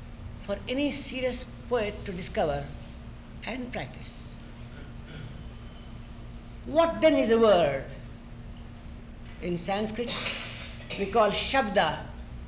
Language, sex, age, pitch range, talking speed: English, female, 60-79, 155-240 Hz, 85 wpm